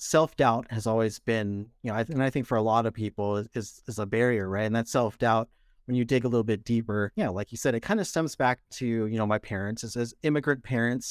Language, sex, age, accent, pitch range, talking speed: English, male, 30-49, American, 110-135 Hz, 265 wpm